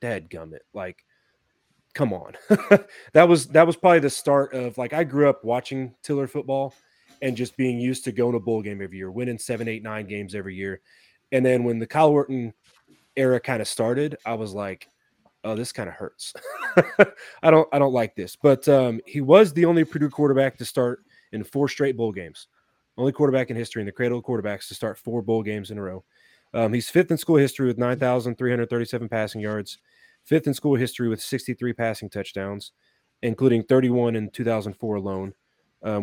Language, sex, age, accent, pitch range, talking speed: English, male, 30-49, American, 105-130 Hz, 195 wpm